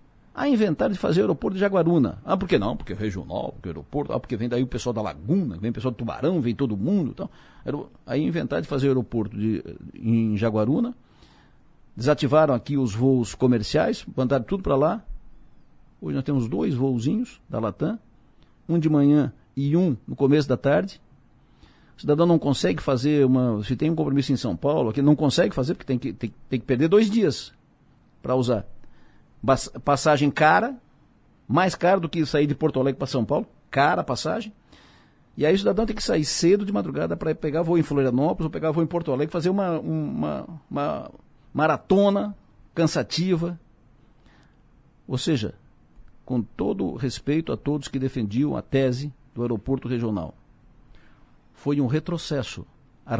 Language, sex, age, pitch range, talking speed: Portuguese, male, 60-79, 125-160 Hz, 180 wpm